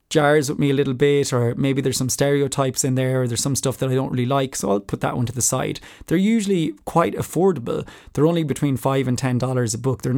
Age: 20-39